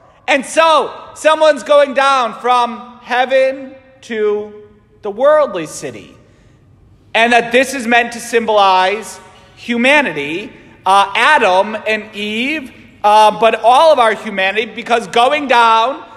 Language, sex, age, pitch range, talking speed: English, male, 40-59, 200-275 Hz, 120 wpm